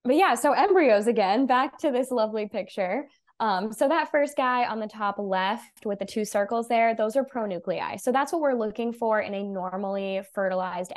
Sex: female